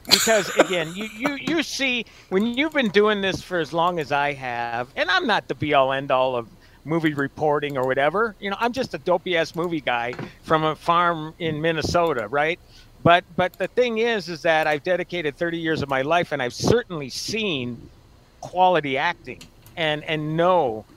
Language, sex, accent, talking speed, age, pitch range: English, male, American, 185 wpm, 50-69, 140-180 Hz